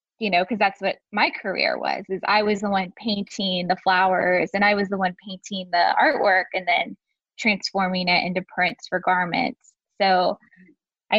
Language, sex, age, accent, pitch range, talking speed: English, female, 10-29, American, 185-220 Hz, 180 wpm